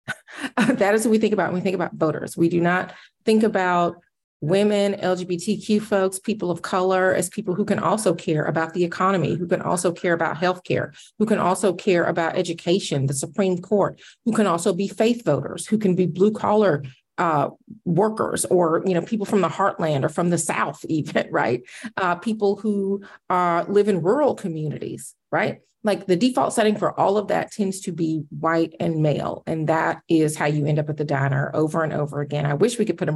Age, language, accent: 30-49, English, American